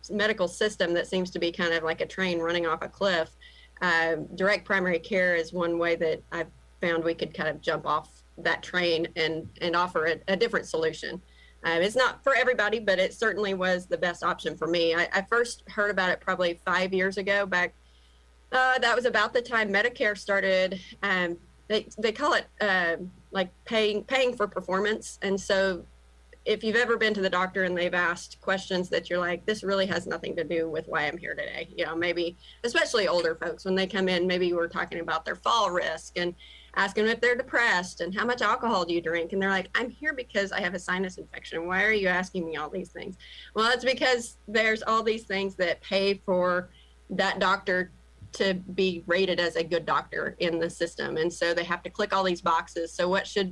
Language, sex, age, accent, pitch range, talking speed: English, female, 30-49, American, 170-210 Hz, 215 wpm